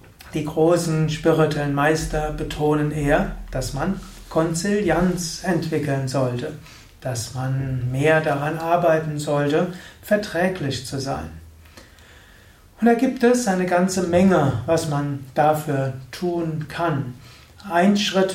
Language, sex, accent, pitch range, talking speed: German, male, German, 135-175 Hz, 110 wpm